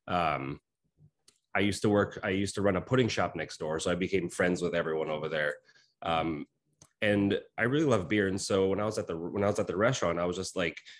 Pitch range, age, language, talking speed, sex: 85-105 Hz, 20-39, English, 245 wpm, male